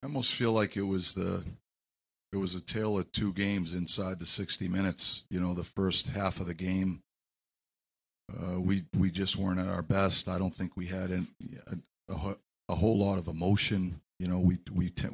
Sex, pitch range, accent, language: male, 85-95 Hz, American, English